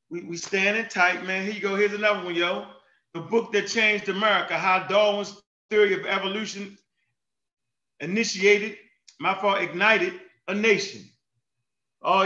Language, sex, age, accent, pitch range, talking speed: English, male, 30-49, American, 195-230 Hz, 135 wpm